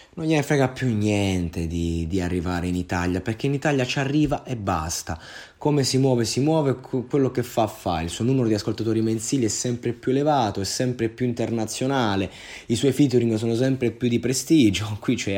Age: 20-39